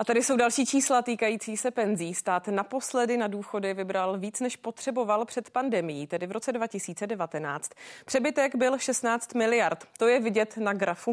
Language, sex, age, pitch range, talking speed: Czech, female, 30-49, 200-240 Hz, 165 wpm